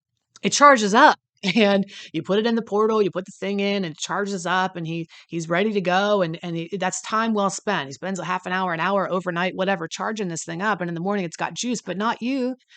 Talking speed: 265 wpm